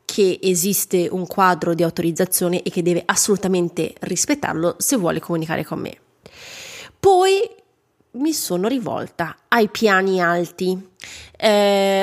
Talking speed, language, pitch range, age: 120 wpm, Italian, 180-260 Hz, 30-49